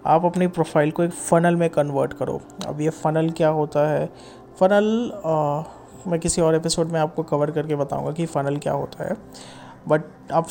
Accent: native